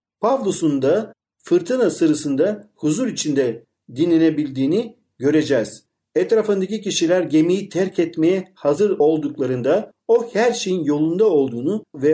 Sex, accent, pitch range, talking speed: male, native, 140-205 Hz, 105 wpm